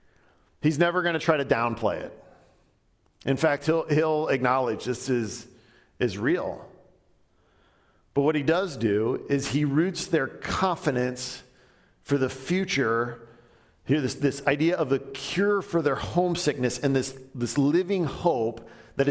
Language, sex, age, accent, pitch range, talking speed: English, male, 40-59, American, 130-195 Hz, 140 wpm